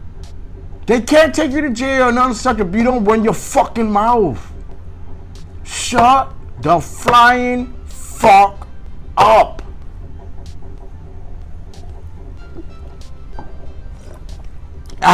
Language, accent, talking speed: English, American, 85 wpm